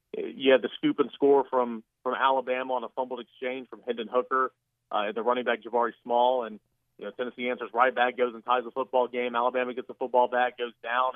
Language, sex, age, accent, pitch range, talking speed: English, male, 40-59, American, 120-140 Hz, 225 wpm